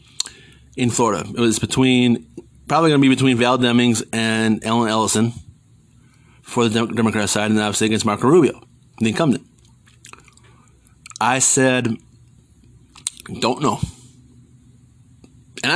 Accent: American